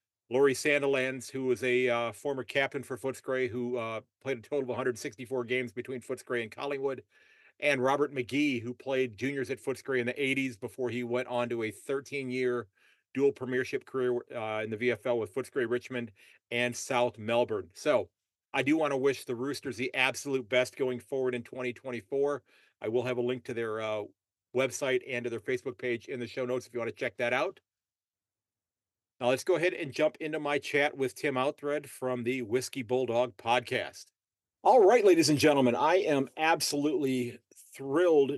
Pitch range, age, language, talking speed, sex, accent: 120-140 Hz, 40-59, English, 185 wpm, male, American